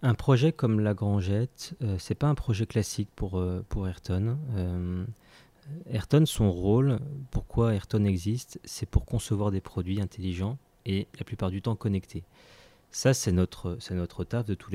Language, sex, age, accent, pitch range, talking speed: French, male, 30-49, French, 95-125 Hz, 175 wpm